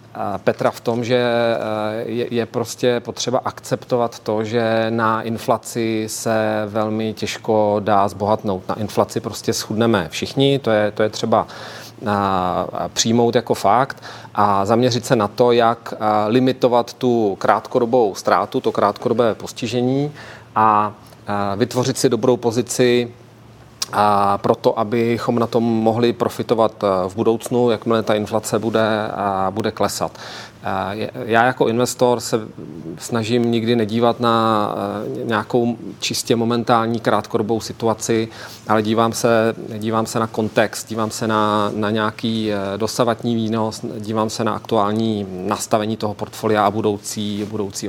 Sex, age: male, 40-59